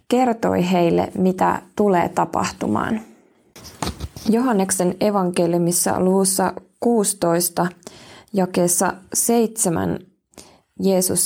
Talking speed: 65 wpm